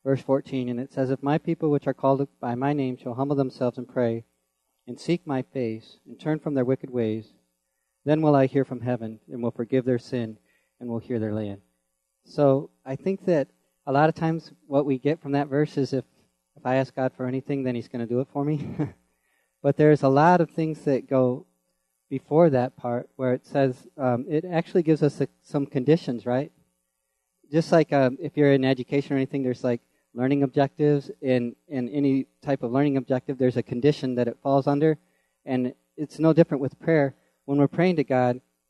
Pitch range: 120-145 Hz